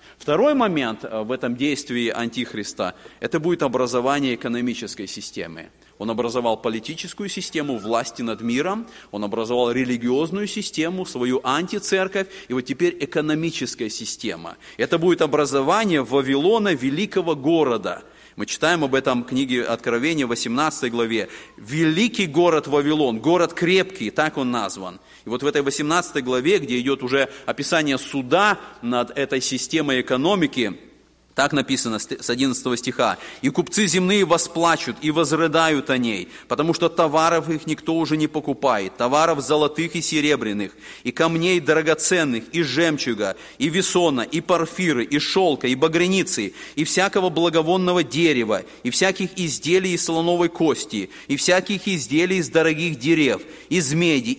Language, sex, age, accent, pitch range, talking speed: Russian, male, 30-49, native, 130-175 Hz, 135 wpm